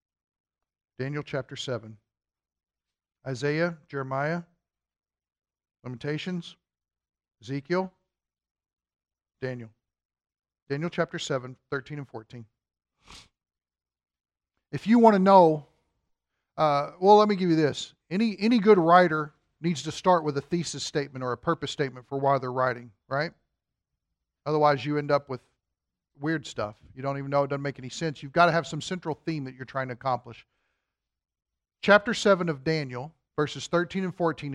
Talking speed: 140 wpm